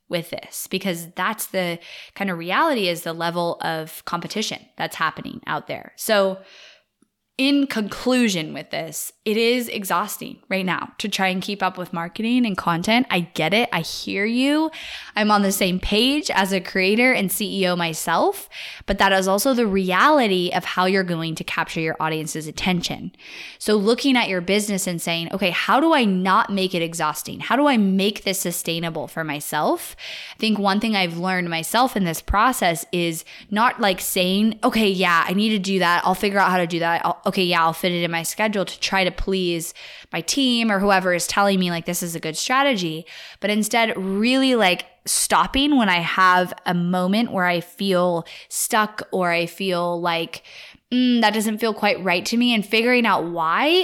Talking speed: 195 wpm